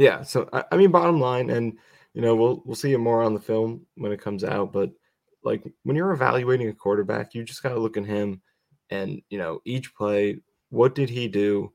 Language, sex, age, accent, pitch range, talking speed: English, male, 20-39, American, 105-120 Hz, 225 wpm